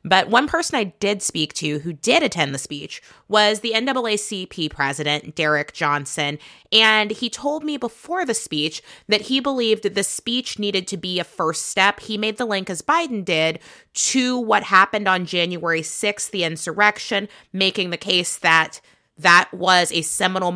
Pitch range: 180-225 Hz